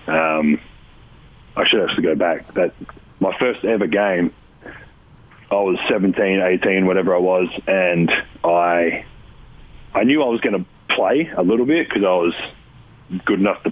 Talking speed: 160 wpm